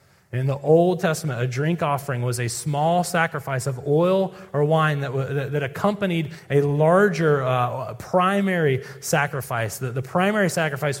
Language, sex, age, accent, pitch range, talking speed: English, male, 30-49, American, 120-165 Hz, 145 wpm